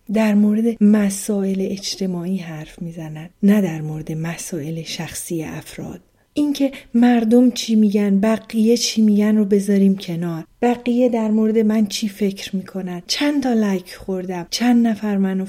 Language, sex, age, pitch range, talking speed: Persian, female, 30-49, 180-230 Hz, 140 wpm